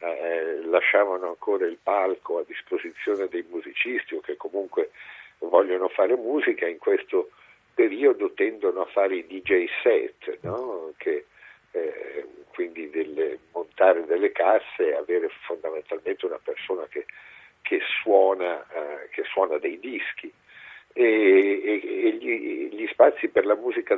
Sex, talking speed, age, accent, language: male, 120 wpm, 50-69, native, Italian